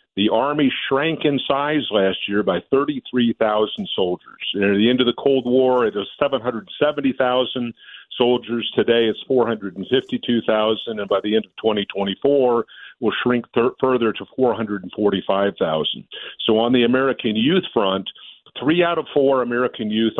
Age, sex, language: 50-69, male, English